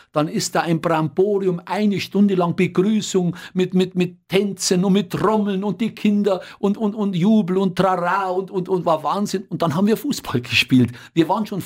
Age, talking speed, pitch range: 50-69, 200 wpm, 150-210 Hz